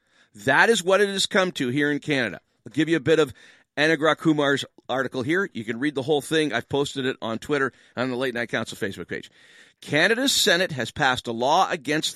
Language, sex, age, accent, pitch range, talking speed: English, male, 40-59, American, 130-185 Hz, 225 wpm